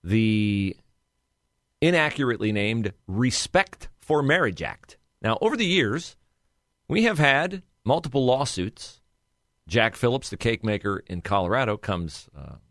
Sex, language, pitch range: male, English, 95-135 Hz